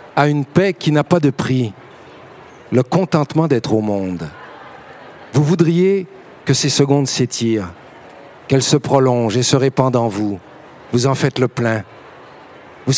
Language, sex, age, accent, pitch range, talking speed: French, male, 50-69, French, 130-160 Hz, 155 wpm